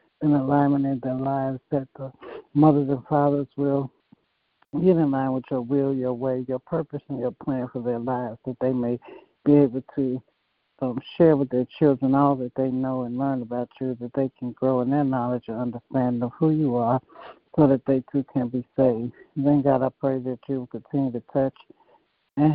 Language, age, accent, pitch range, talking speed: English, 60-79, American, 130-145 Hz, 205 wpm